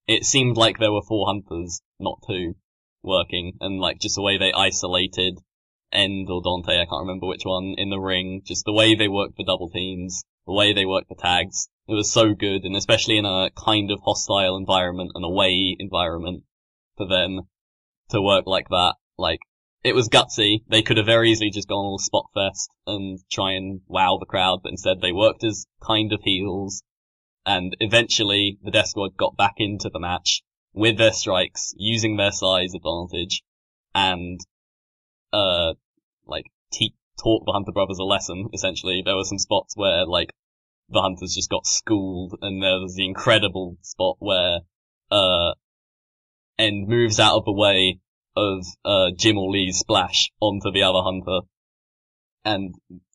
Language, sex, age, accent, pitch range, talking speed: English, male, 10-29, British, 90-105 Hz, 175 wpm